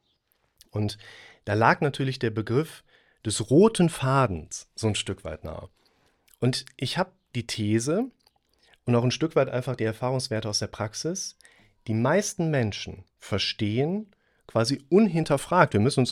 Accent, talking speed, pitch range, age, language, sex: German, 145 wpm, 95-130 Hz, 40-59, German, male